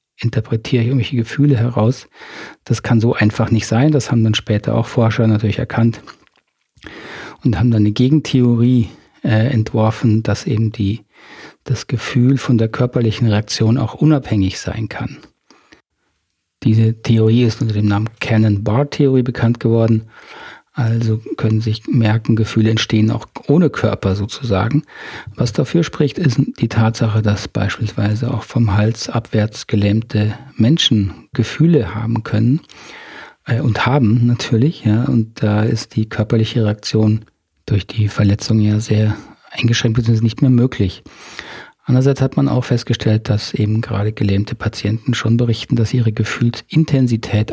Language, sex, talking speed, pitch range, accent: German, male, 140 wpm, 110-125 Hz, German